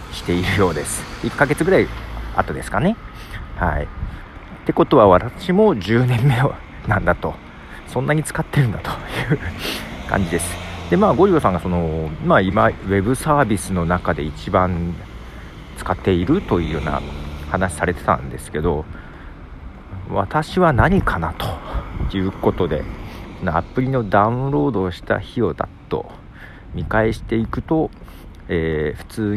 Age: 50-69